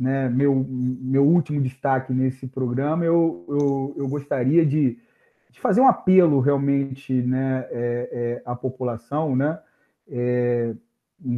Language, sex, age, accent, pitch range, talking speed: Portuguese, male, 40-59, Brazilian, 130-165 Hz, 110 wpm